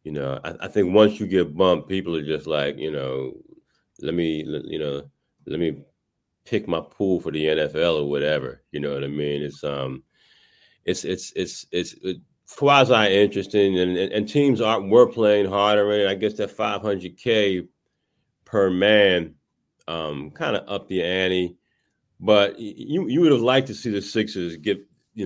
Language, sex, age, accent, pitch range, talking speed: English, male, 30-49, American, 75-105 Hz, 185 wpm